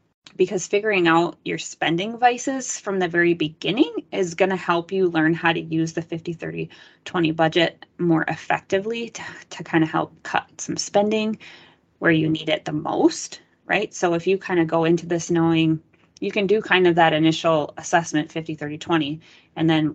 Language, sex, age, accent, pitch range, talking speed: English, female, 20-39, American, 160-185 Hz, 175 wpm